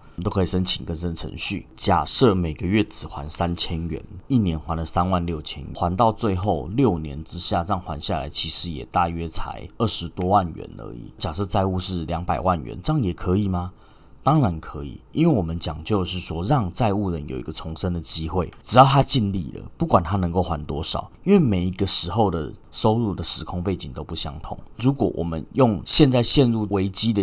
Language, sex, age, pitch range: Chinese, male, 30-49, 85-105 Hz